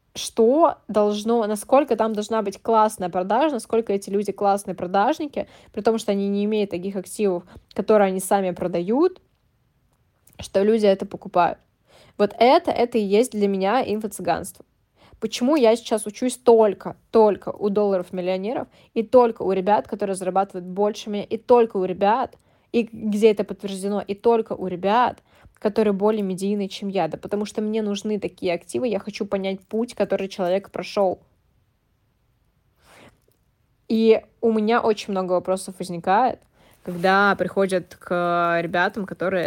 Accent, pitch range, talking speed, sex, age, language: native, 185-220 Hz, 145 wpm, female, 10-29, Russian